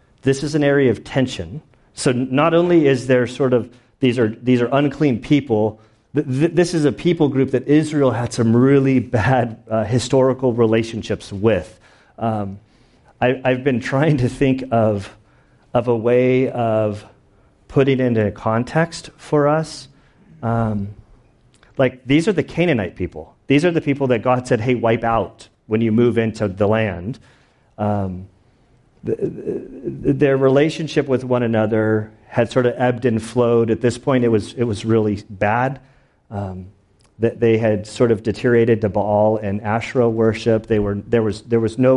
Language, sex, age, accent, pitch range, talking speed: English, male, 40-59, American, 110-130 Hz, 165 wpm